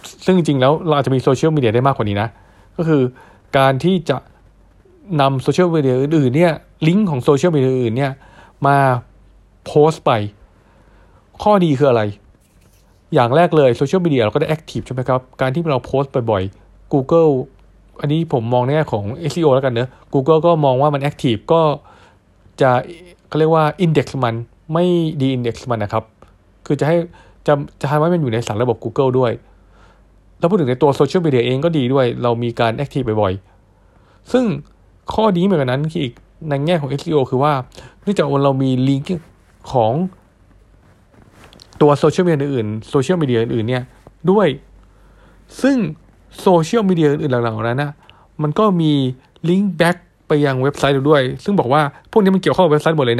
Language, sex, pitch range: Thai, male, 115-155 Hz